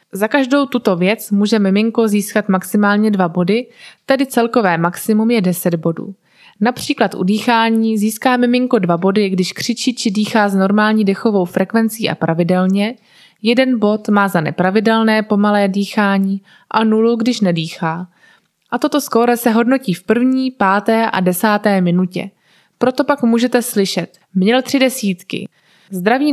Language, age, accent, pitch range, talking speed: Czech, 20-39, native, 195-235 Hz, 145 wpm